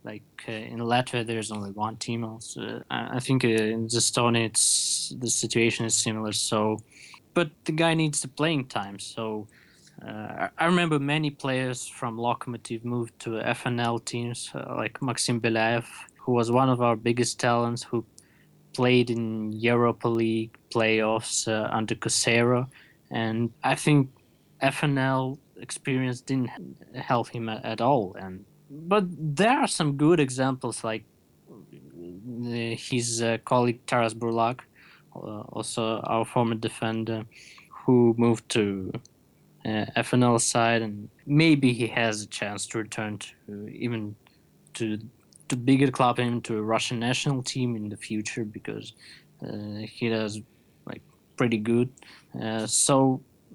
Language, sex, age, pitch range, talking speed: English, male, 20-39, 110-130 Hz, 135 wpm